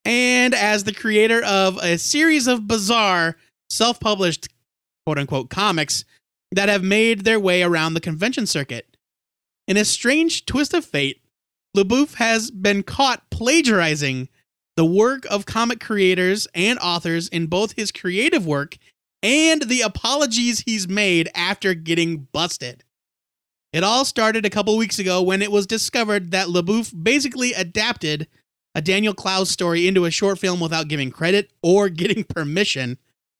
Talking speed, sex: 145 wpm, male